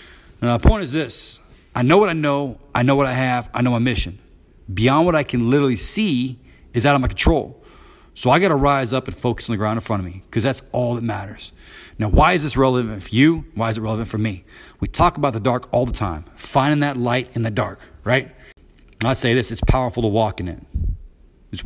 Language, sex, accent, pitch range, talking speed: English, male, American, 110-135 Hz, 245 wpm